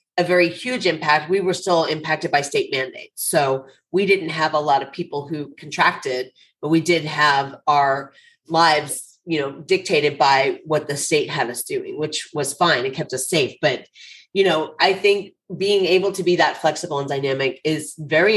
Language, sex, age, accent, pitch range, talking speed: English, female, 30-49, American, 145-175 Hz, 195 wpm